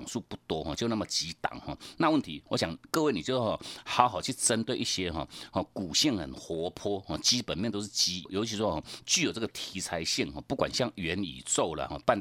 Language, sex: Chinese, male